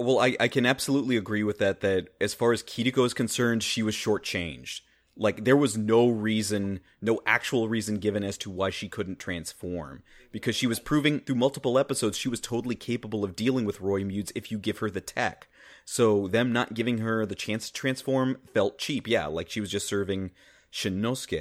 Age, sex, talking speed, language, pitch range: 30-49, male, 205 wpm, English, 100-120 Hz